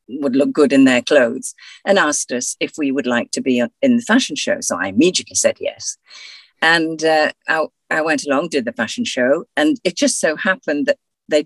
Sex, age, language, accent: female, 50-69, English, British